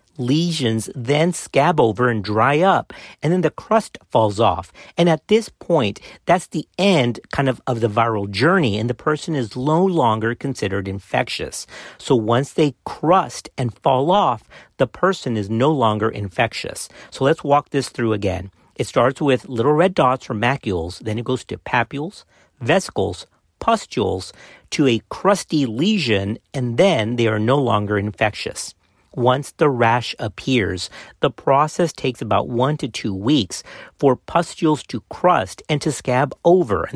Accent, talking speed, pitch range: American, 160 wpm, 110-155 Hz